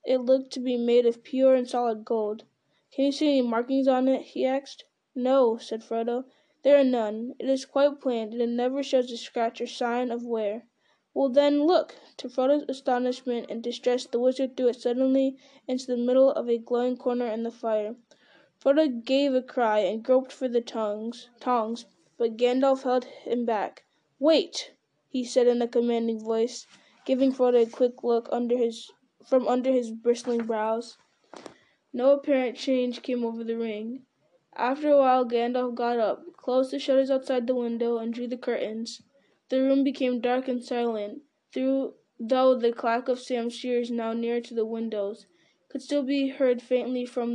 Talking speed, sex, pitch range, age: 180 wpm, female, 235-265 Hz, 10-29